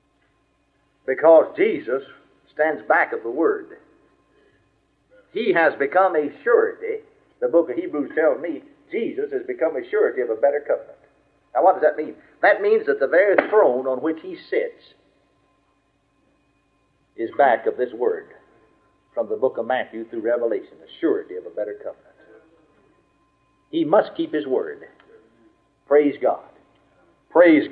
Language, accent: English, American